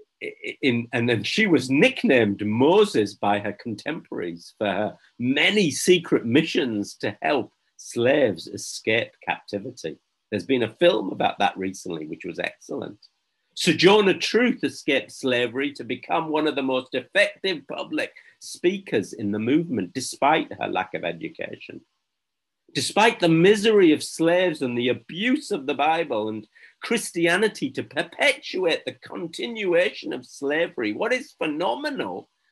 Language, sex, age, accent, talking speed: English, male, 50-69, British, 135 wpm